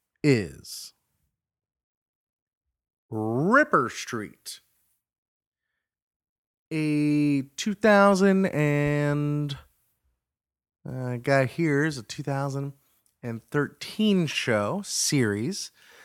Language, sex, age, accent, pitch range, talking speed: English, male, 30-49, American, 130-200 Hz, 50 wpm